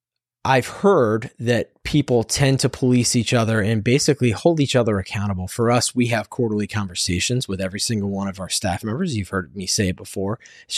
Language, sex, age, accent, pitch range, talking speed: English, male, 20-39, American, 105-125 Hz, 200 wpm